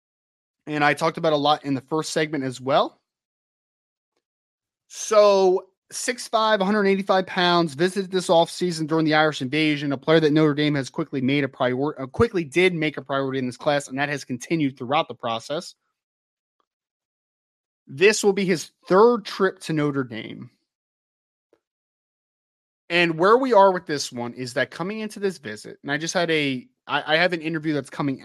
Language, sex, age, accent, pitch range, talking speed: English, male, 20-39, American, 130-165 Hz, 175 wpm